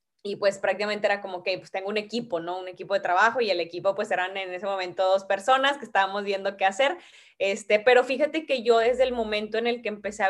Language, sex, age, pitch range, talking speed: Spanish, female, 20-39, 195-240 Hz, 250 wpm